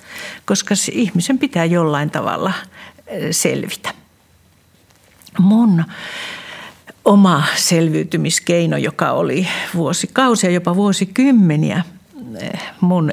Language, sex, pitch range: Finnish, female, 160-205 Hz